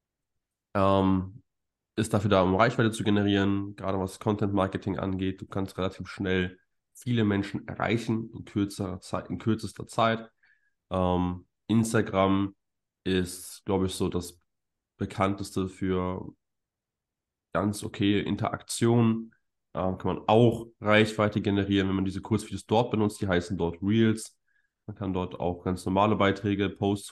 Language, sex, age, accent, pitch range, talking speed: German, male, 20-39, German, 95-110 Hz, 135 wpm